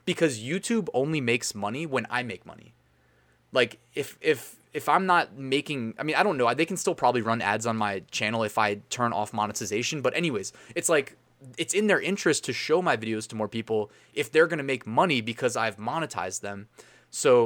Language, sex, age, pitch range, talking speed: English, male, 20-39, 110-140 Hz, 210 wpm